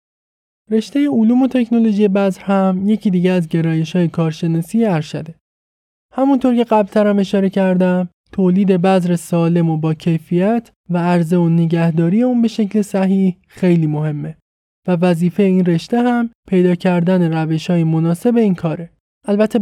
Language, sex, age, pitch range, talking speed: Persian, male, 20-39, 170-210 Hz, 145 wpm